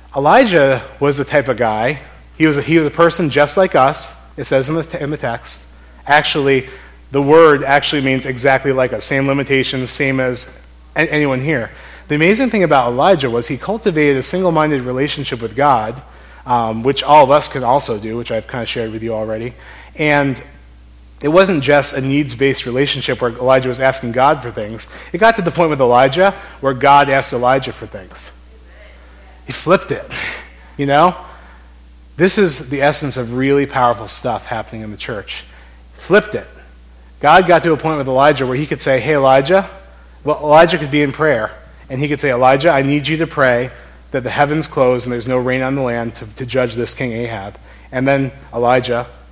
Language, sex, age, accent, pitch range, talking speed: English, male, 30-49, American, 110-145 Hz, 190 wpm